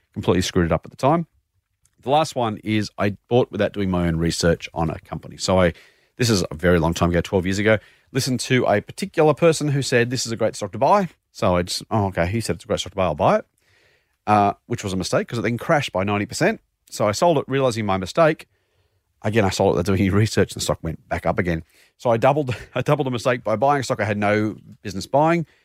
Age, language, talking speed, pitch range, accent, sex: 40-59, English, 260 wpm, 95-120 Hz, Australian, male